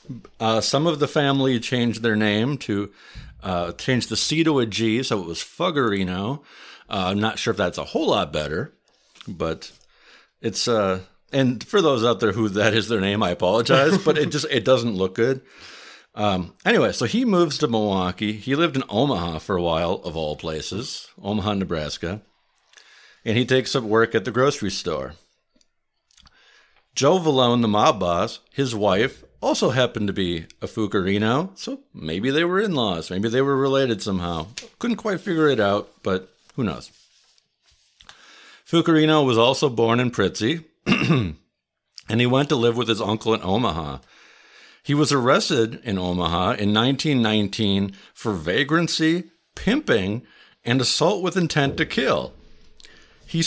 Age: 50-69